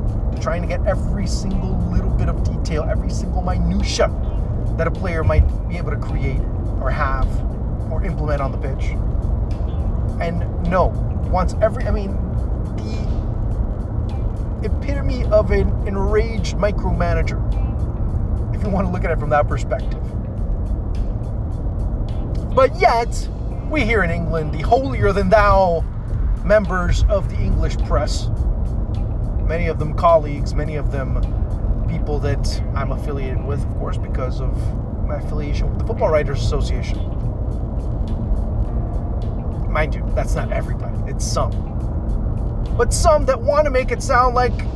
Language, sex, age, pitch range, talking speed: English, male, 30-49, 95-110 Hz, 140 wpm